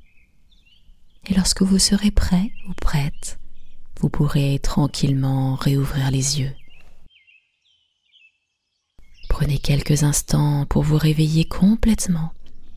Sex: female